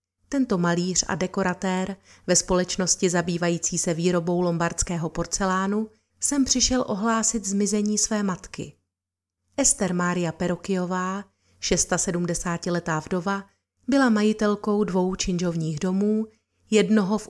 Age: 30-49